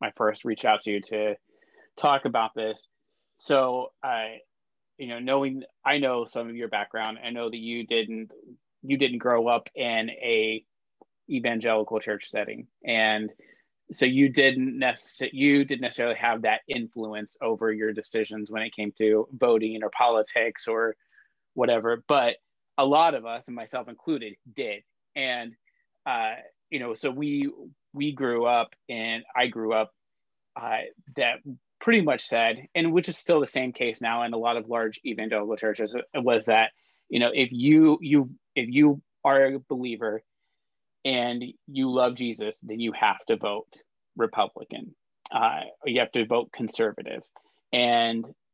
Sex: male